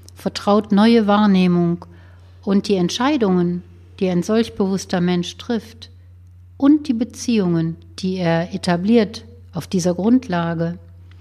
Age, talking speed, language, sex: 60-79, 110 wpm, German, female